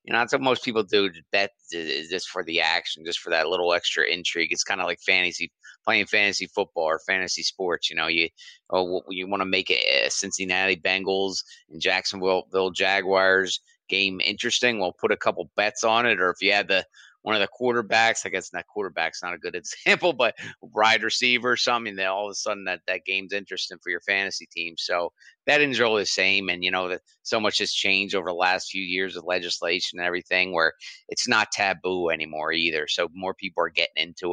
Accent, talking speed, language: American, 215 wpm, English